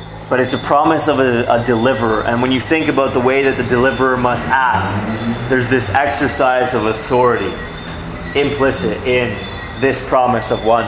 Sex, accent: male, American